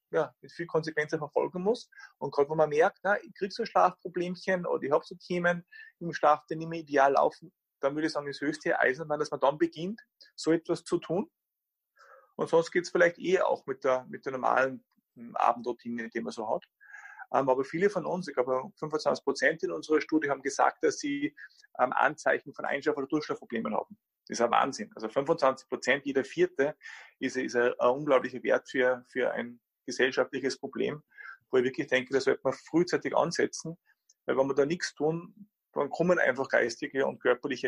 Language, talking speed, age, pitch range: German, 190 wpm, 30-49, 135-195 Hz